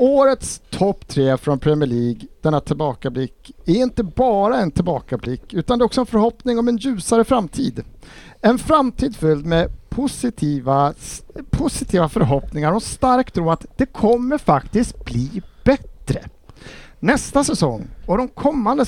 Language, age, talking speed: Swedish, 50-69, 140 wpm